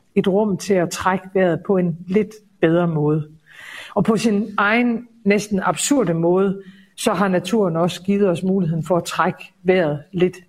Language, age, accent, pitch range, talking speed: Danish, 60-79, native, 175-215 Hz, 170 wpm